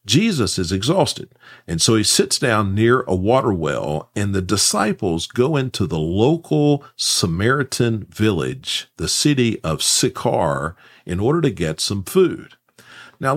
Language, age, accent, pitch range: English, 50-69, American, 95-145 Hz